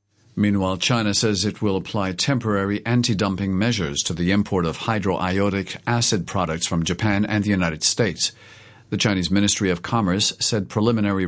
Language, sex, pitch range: English, male, 95-115 Hz